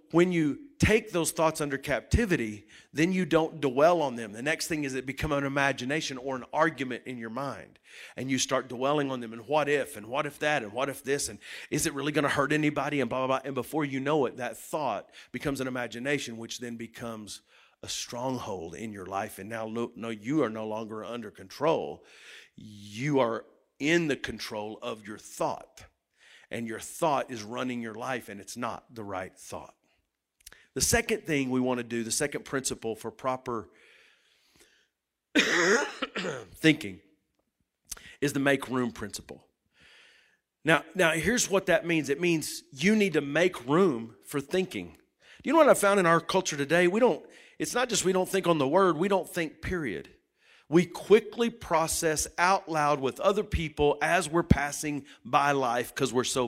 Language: English